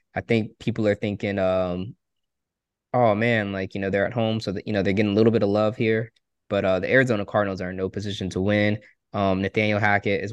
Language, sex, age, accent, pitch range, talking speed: English, male, 20-39, American, 95-110 Hz, 240 wpm